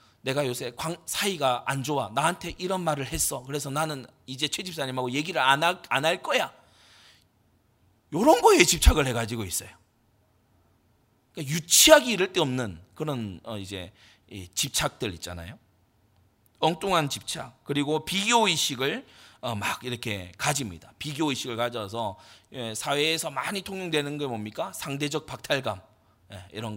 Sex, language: male, Korean